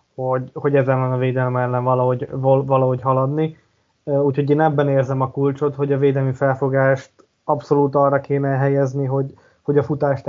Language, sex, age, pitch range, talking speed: Hungarian, male, 20-39, 135-145 Hz, 170 wpm